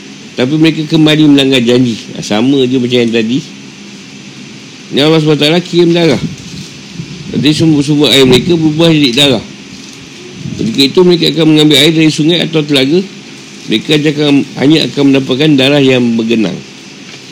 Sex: male